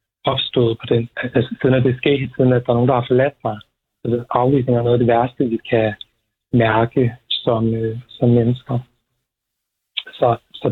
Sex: male